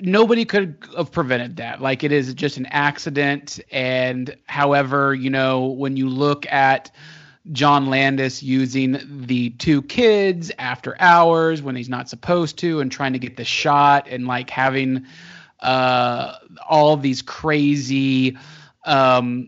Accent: American